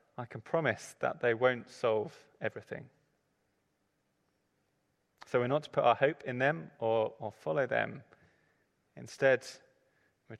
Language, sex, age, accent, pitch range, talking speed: English, male, 20-39, British, 115-140 Hz, 135 wpm